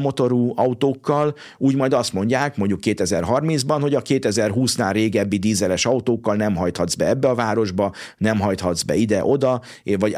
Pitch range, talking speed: 95-120 Hz, 145 wpm